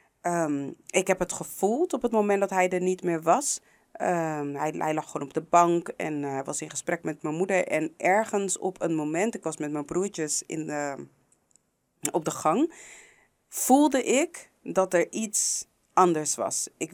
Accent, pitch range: Dutch, 155-195 Hz